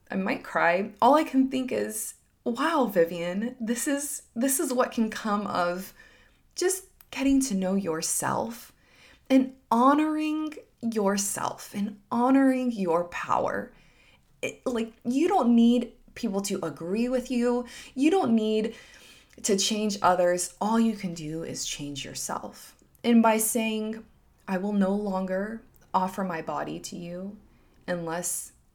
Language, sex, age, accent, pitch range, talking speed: English, female, 20-39, American, 185-245 Hz, 140 wpm